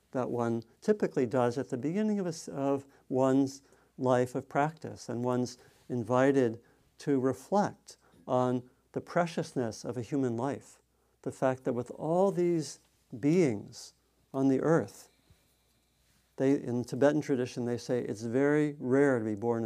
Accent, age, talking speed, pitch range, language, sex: American, 50-69, 140 wpm, 110-135 Hz, English, male